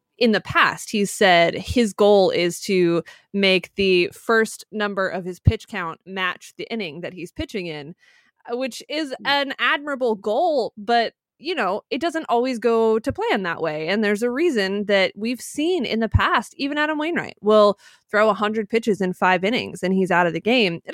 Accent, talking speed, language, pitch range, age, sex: American, 195 wpm, English, 185-230 Hz, 20-39, female